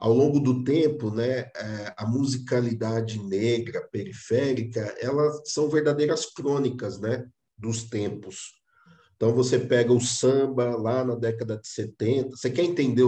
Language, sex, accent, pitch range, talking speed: Portuguese, male, Brazilian, 115-140 Hz, 135 wpm